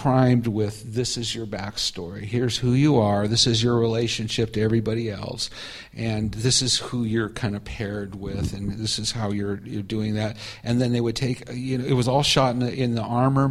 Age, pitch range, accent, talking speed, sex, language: 50-69, 110-120 Hz, American, 220 wpm, male, English